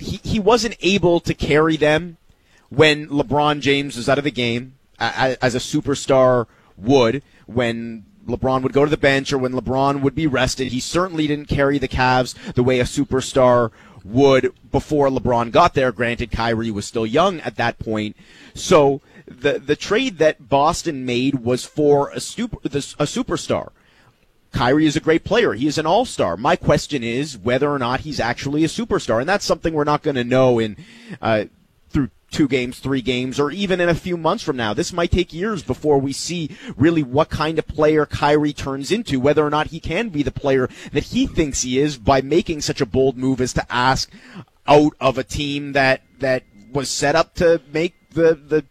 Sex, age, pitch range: male, 30-49, 125-155 Hz